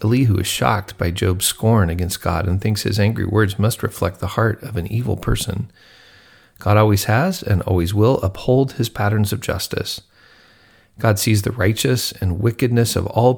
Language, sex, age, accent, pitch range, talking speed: English, male, 40-59, American, 95-125 Hz, 180 wpm